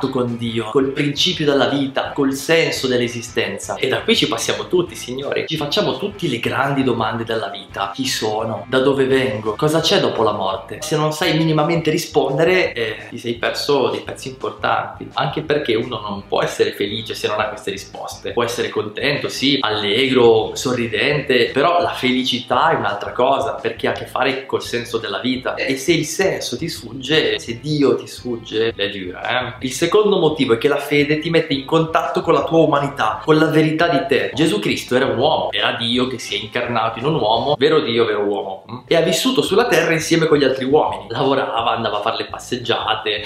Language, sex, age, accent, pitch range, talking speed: Italian, male, 20-39, native, 120-165 Hz, 205 wpm